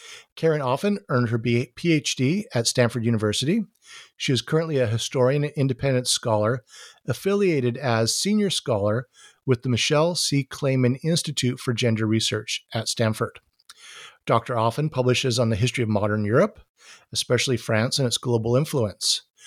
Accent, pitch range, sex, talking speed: American, 115-145 Hz, male, 140 wpm